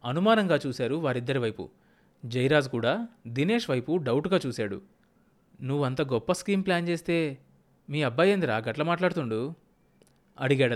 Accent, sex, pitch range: native, male, 125-180 Hz